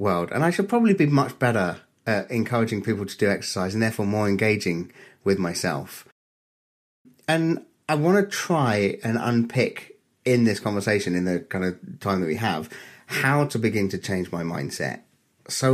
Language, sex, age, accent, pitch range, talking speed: English, male, 30-49, British, 95-125 Hz, 175 wpm